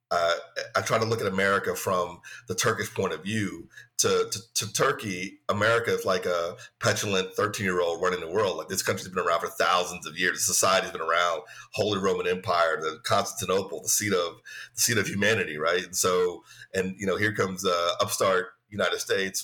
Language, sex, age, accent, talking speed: English, male, 30-49, American, 190 wpm